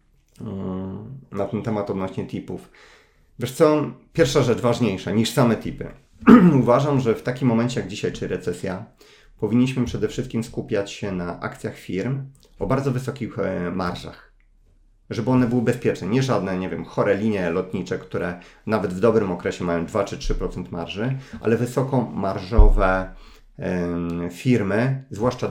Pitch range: 100-130 Hz